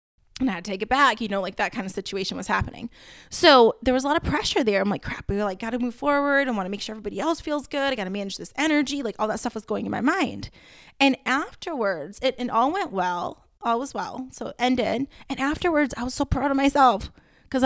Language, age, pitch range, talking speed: English, 20-39, 195-260 Hz, 270 wpm